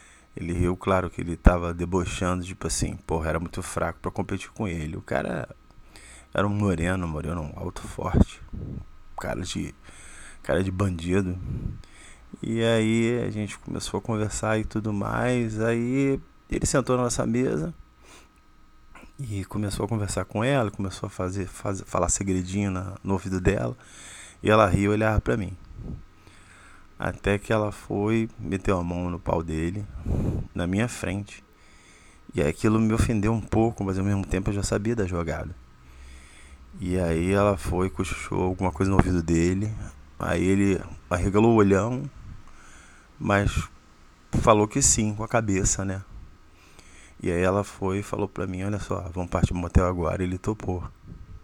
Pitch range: 85-105 Hz